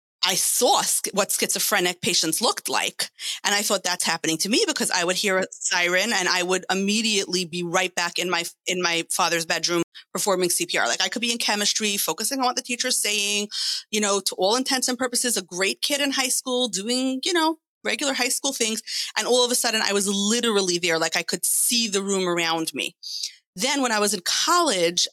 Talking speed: 215 wpm